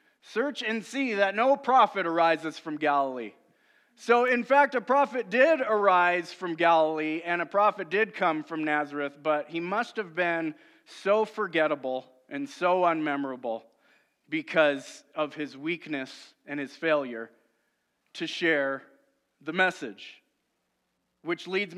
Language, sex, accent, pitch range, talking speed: English, male, American, 155-205 Hz, 130 wpm